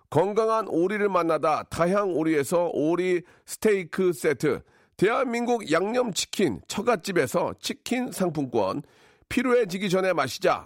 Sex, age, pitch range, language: male, 40-59, 170-220 Hz, Korean